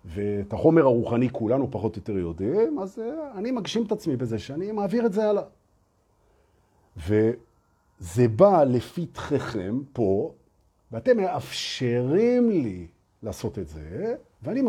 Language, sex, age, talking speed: Hebrew, male, 50-69, 115 wpm